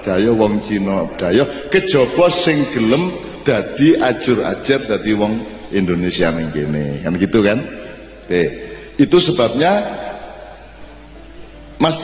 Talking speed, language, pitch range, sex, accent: 105 wpm, Indonesian, 115-170 Hz, male, native